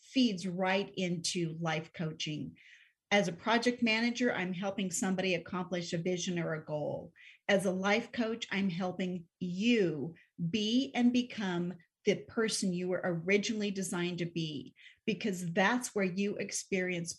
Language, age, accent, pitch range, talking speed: English, 40-59, American, 175-225 Hz, 145 wpm